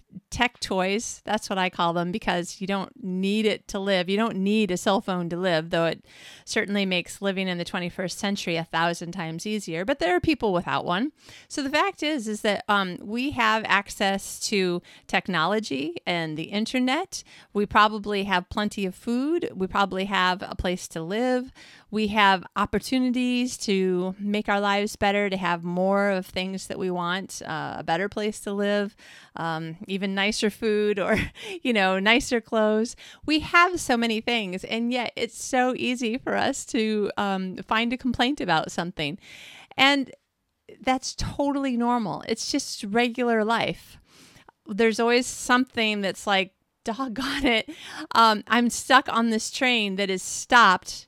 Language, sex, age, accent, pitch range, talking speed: English, female, 40-59, American, 190-240 Hz, 165 wpm